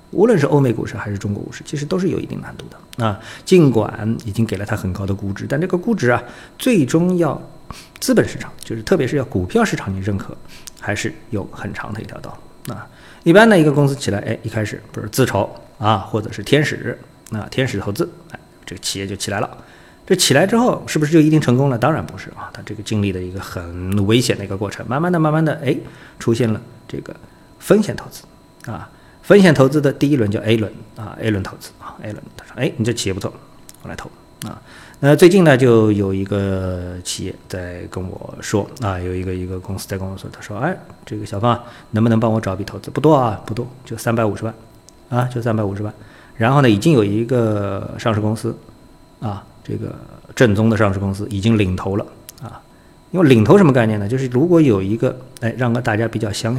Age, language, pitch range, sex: 50-69, Chinese, 100-135 Hz, male